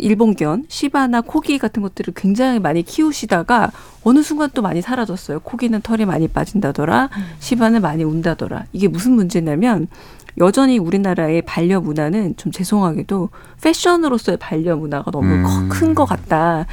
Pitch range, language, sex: 170-235 Hz, Korean, female